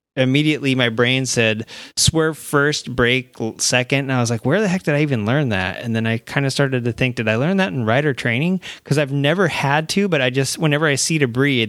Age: 30-49